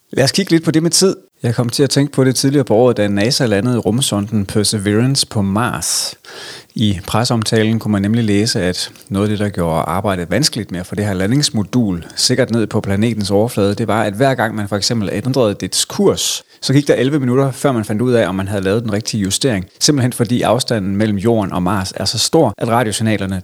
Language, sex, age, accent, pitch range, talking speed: Danish, male, 30-49, native, 105-130 Hz, 230 wpm